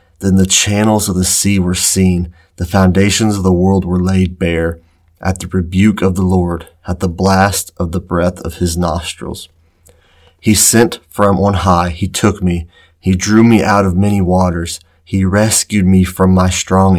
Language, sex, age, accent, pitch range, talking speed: English, male, 30-49, American, 85-95 Hz, 185 wpm